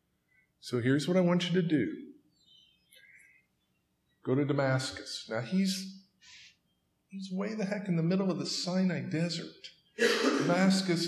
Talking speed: 135 wpm